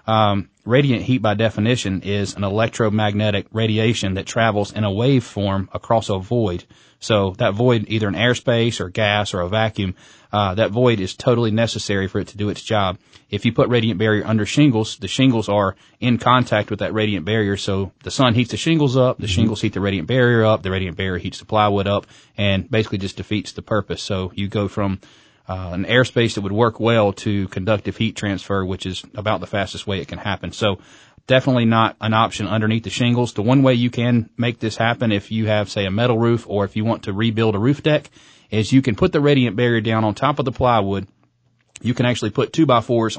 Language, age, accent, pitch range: English, 30-49, American, 100-120 Hz